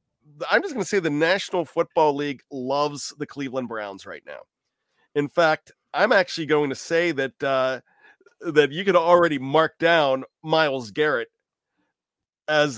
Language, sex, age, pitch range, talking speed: English, male, 40-59, 140-170 Hz, 155 wpm